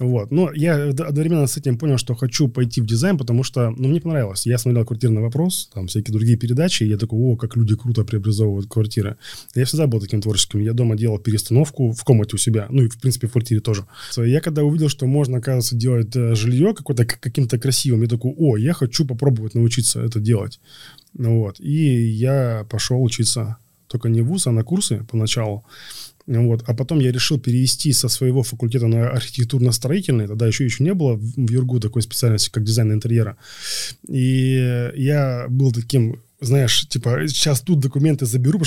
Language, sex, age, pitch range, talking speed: Russian, male, 20-39, 115-145 Hz, 185 wpm